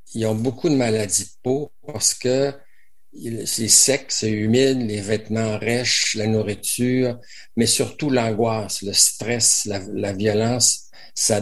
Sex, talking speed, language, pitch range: male, 140 wpm, French, 105-120 Hz